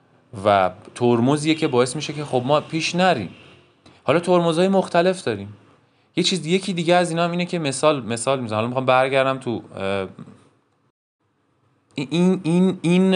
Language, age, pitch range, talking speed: Persian, 30-49, 115-175 Hz, 150 wpm